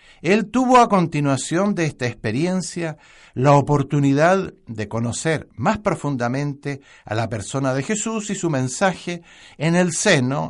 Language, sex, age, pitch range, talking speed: Spanish, male, 60-79, 120-175 Hz, 135 wpm